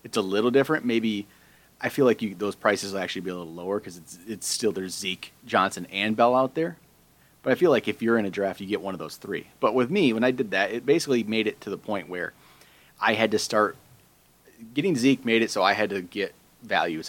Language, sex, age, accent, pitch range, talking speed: English, male, 30-49, American, 95-120 Hz, 250 wpm